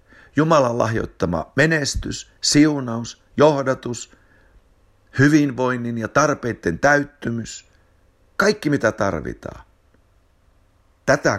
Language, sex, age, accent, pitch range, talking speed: Finnish, male, 60-79, native, 85-120 Hz, 70 wpm